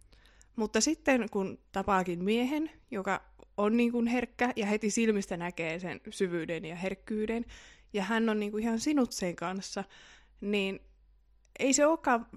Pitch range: 180-220 Hz